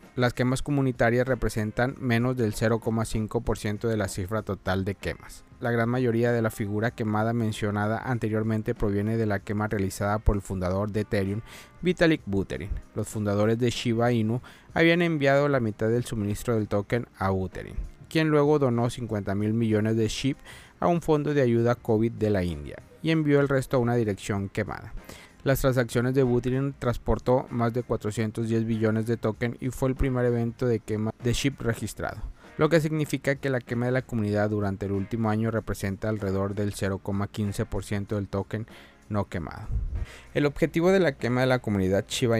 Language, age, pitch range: Spanish, 30-49, 100-125 Hz